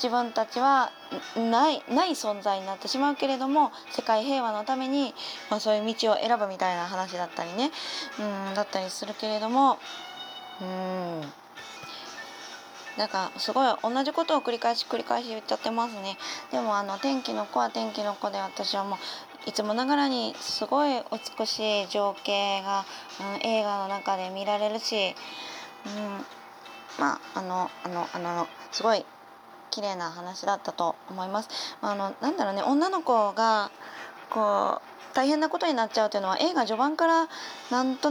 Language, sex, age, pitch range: Japanese, female, 20-39, 195-265 Hz